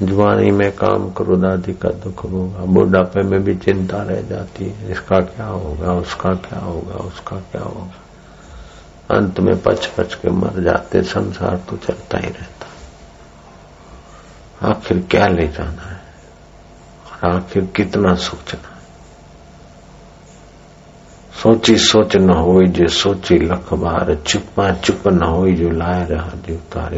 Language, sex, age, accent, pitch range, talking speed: Hindi, male, 60-79, native, 85-95 Hz, 135 wpm